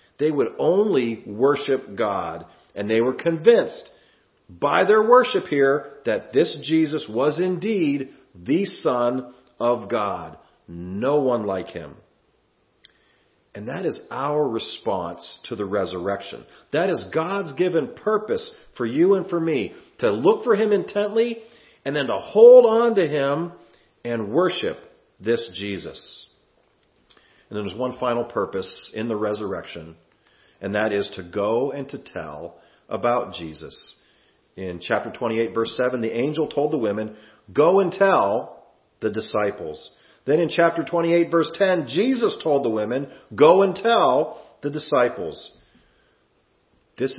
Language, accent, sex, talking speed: English, American, male, 140 wpm